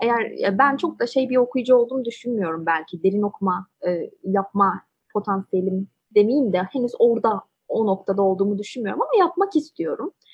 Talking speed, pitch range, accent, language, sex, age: 150 wpm, 190-265 Hz, native, Turkish, female, 20-39